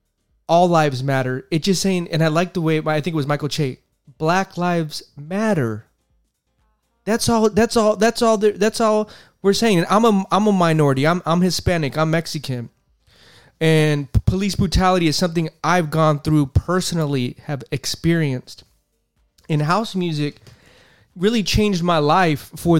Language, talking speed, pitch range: English, 165 wpm, 140-185 Hz